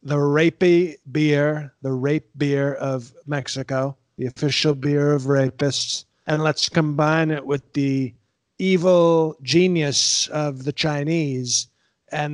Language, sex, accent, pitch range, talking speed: English, male, American, 135-155 Hz, 120 wpm